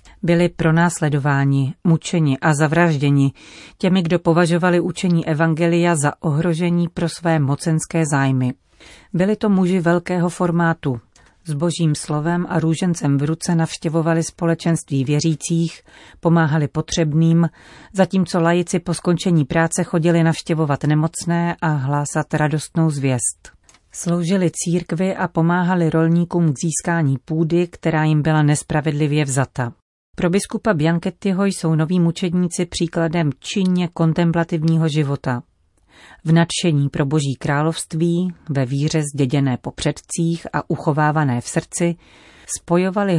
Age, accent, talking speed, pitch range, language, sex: 40-59, native, 115 wpm, 150-175 Hz, Czech, female